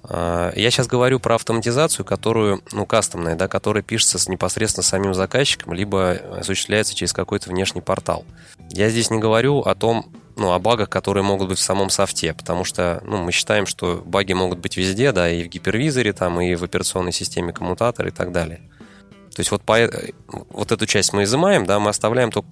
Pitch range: 95-110 Hz